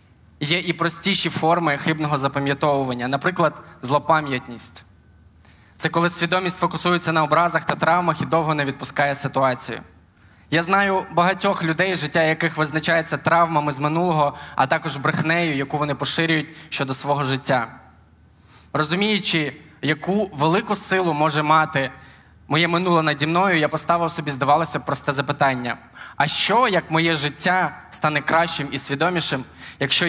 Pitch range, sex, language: 140-170 Hz, male, Ukrainian